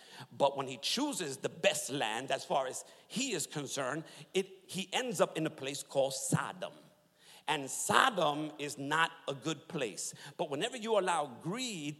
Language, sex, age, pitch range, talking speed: English, male, 50-69, 165-255 Hz, 170 wpm